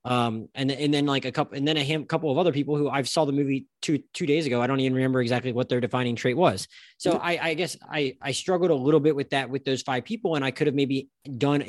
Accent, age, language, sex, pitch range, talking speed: American, 20-39, English, male, 125-155 Hz, 295 wpm